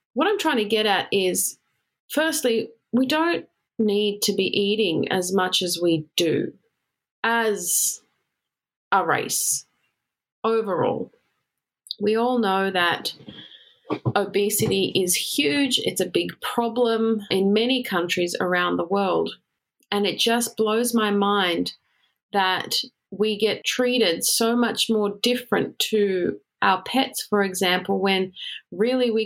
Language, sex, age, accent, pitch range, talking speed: English, female, 30-49, Australian, 190-235 Hz, 125 wpm